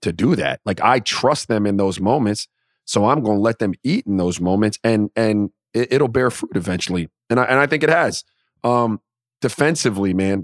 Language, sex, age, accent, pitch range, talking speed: English, male, 30-49, American, 105-120 Hz, 200 wpm